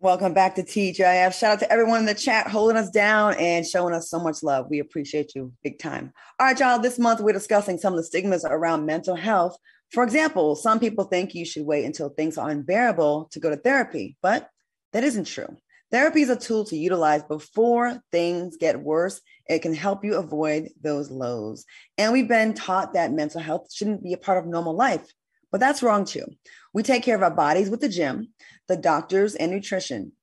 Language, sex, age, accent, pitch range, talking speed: English, female, 20-39, American, 160-225 Hz, 210 wpm